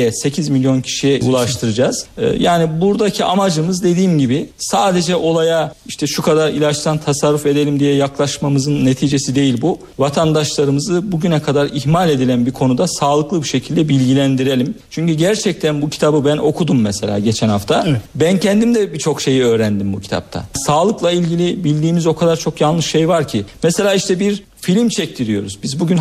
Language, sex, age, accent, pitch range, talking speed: Turkish, male, 50-69, native, 145-185 Hz, 155 wpm